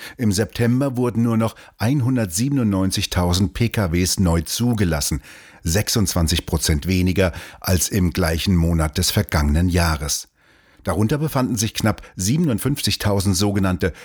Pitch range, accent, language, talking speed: 90-110 Hz, German, German, 105 wpm